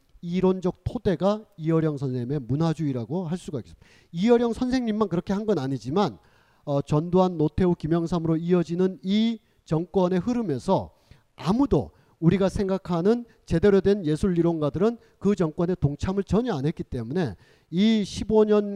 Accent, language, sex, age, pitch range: native, Korean, male, 40-59, 165-215 Hz